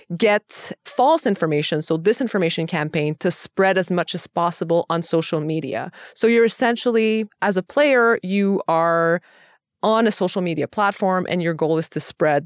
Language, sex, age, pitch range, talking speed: English, female, 20-39, 165-205 Hz, 165 wpm